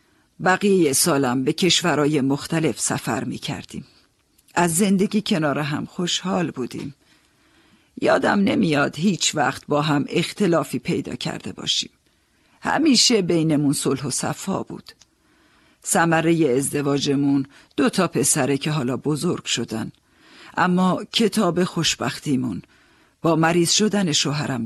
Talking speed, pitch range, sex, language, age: 110 wpm, 145-190 Hz, female, Persian, 50-69